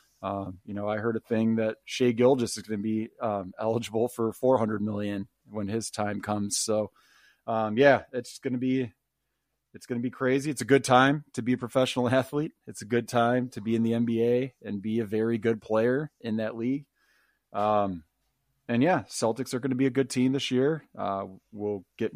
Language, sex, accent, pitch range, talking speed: English, male, American, 105-125 Hz, 210 wpm